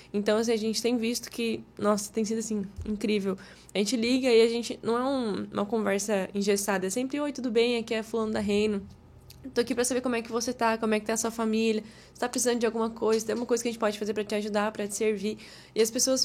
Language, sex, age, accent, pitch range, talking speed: Portuguese, female, 10-29, Brazilian, 215-265 Hz, 270 wpm